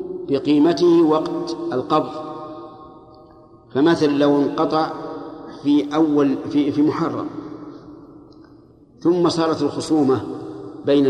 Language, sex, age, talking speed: Arabic, male, 50-69, 80 wpm